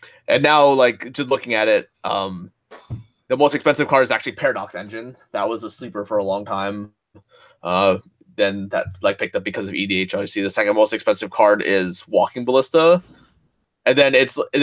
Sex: male